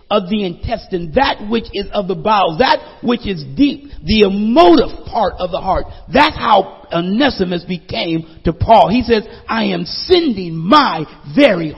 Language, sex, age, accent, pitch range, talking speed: English, male, 50-69, American, 150-230 Hz, 165 wpm